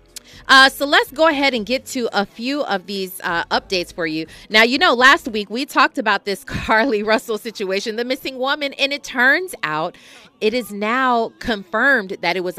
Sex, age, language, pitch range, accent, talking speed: female, 30-49, English, 160-240 Hz, American, 200 wpm